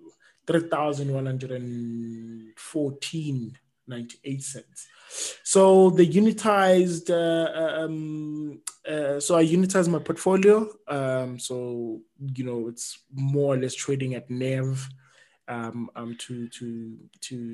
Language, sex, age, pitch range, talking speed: English, male, 20-39, 130-165 Hz, 125 wpm